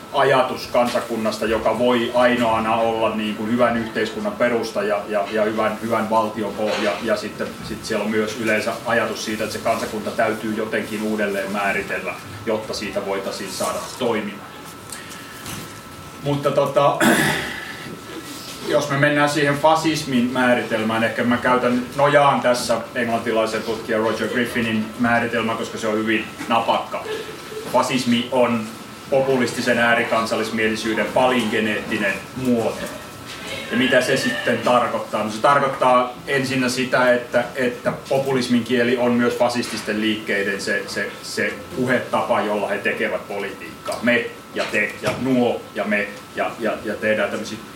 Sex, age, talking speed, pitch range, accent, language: male, 30-49, 130 wpm, 110-125 Hz, native, Finnish